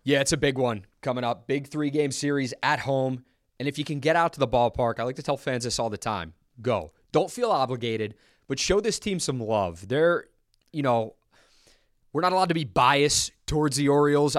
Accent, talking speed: American, 215 wpm